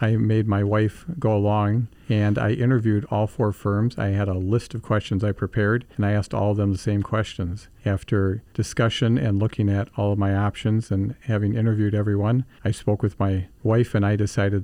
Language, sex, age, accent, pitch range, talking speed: English, male, 50-69, American, 100-115 Hz, 205 wpm